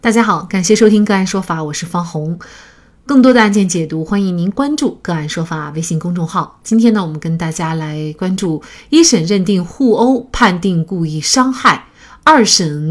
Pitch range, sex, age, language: 165-245 Hz, female, 30-49, Chinese